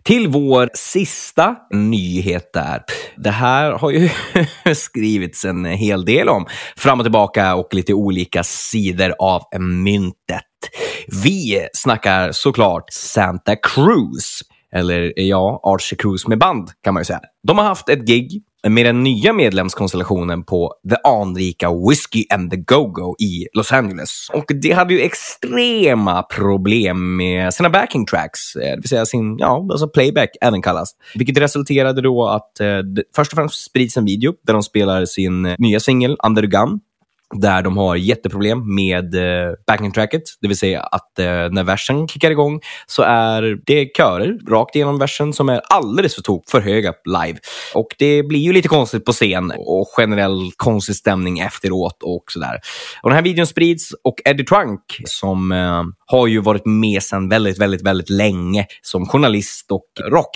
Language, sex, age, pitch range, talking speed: Swedish, male, 20-39, 95-140 Hz, 160 wpm